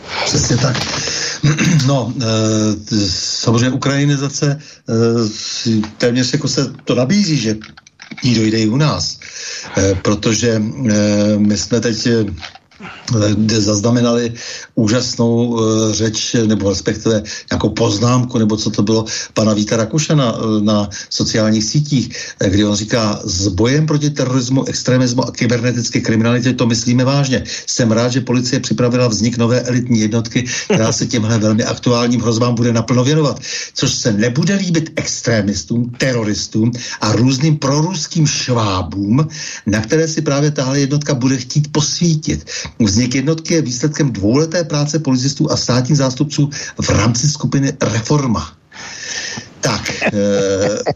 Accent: native